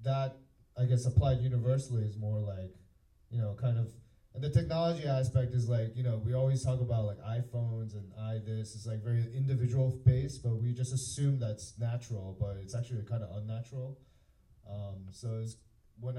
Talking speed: 185 wpm